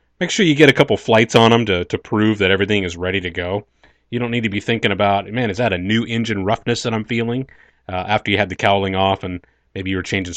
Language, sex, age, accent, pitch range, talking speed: English, male, 30-49, American, 95-125 Hz, 270 wpm